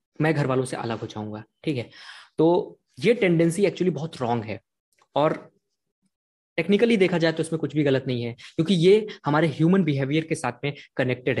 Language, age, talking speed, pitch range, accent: Hindi, 20-39, 190 wpm, 135-180 Hz, native